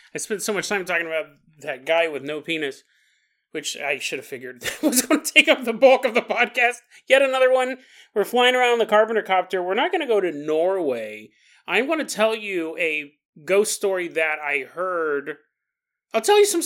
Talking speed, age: 215 wpm, 30-49